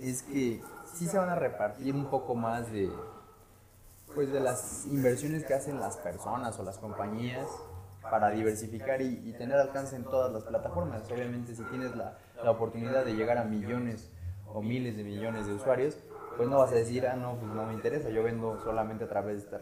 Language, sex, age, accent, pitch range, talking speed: Spanish, male, 20-39, Mexican, 110-135 Hz, 200 wpm